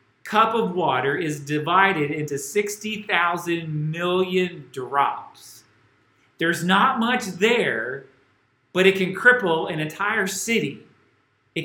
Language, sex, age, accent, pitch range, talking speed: English, male, 40-59, American, 145-195 Hz, 110 wpm